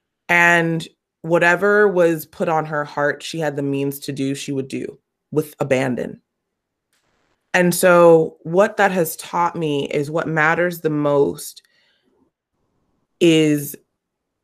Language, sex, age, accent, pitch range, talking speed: English, female, 20-39, American, 145-170 Hz, 130 wpm